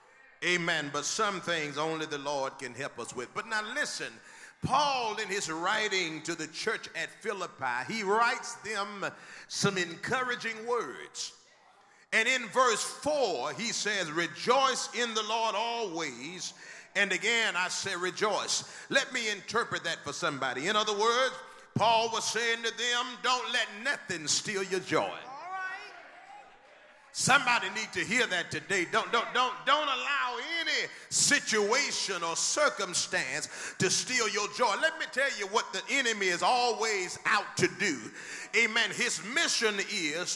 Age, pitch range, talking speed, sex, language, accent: 40-59, 185-250 Hz, 145 wpm, male, English, American